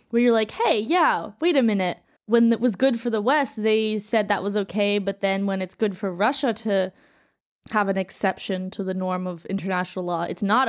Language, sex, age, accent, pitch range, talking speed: English, female, 20-39, American, 185-230 Hz, 220 wpm